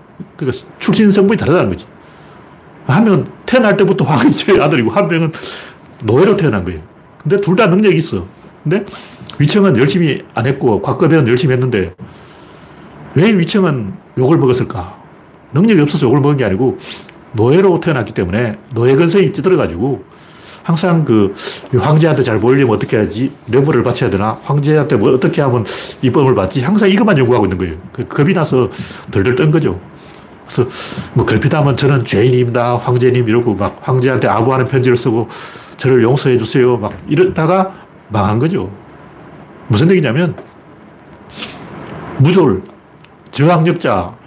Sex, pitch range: male, 125-175 Hz